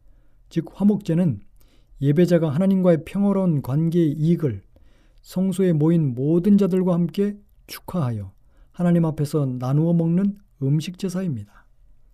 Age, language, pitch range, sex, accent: 40-59, Korean, 140-180 Hz, male, native